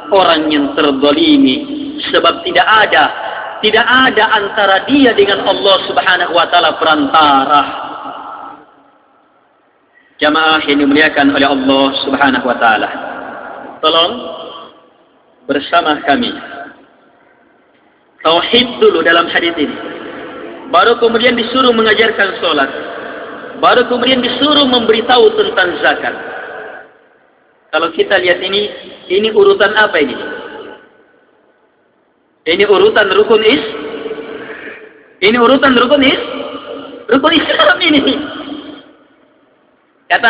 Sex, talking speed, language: male, 95 wpm, Indonesian